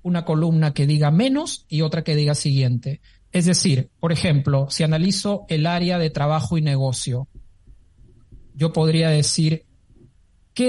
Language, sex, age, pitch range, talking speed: Spanish, male, 50-69, 135-175 Hz, 145 wpm